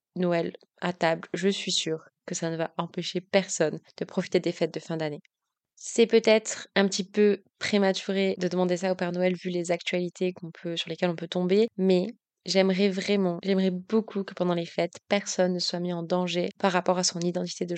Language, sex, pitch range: French, female, 170-190 Hz